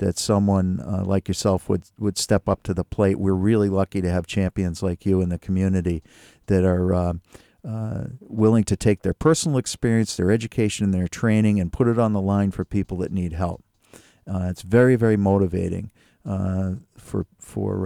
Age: 50-69